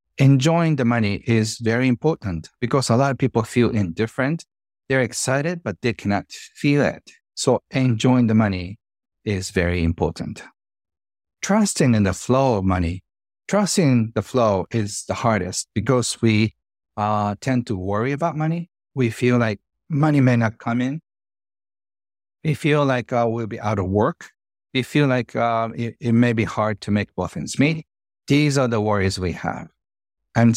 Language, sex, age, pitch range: English, male, 50-69, 100-125 Hz